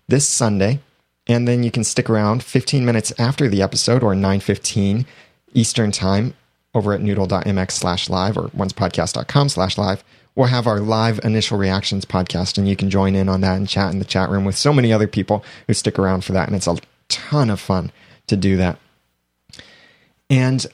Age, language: 30-49, English